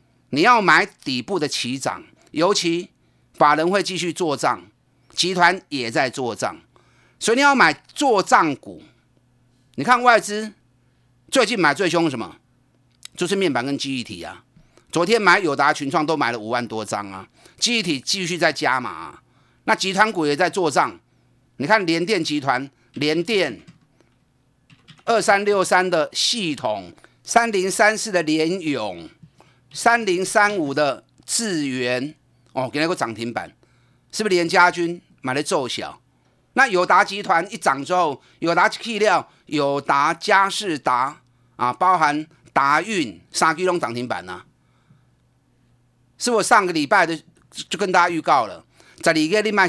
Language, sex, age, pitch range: Chinese, male, 30-49, 130-195 Hz